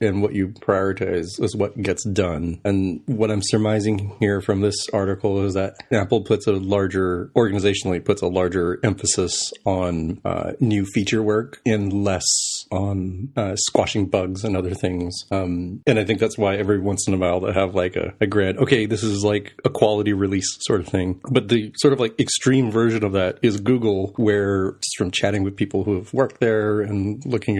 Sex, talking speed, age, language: male, 200 wpm, 30-49, English